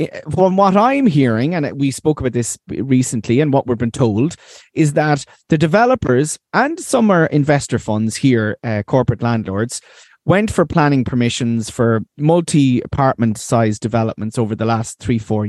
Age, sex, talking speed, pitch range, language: 30-49, male, 160 wpm, 120-150 Hz, English